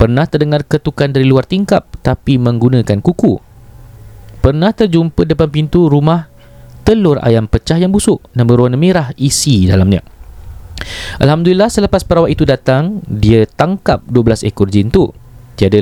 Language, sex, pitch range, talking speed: Malay, male, 110-160 Hz, 135 wpm